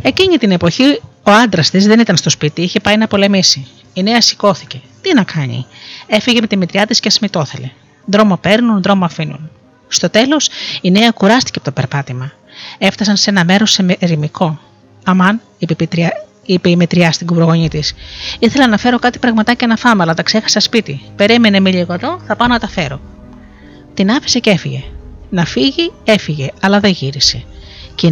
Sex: female